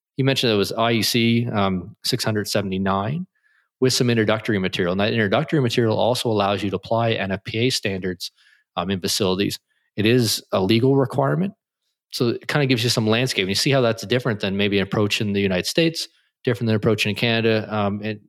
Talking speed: 195 wpm